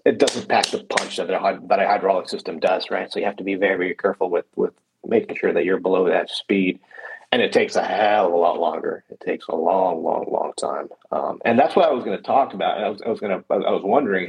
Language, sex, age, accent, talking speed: English, male, 40-59, American, 270 wpm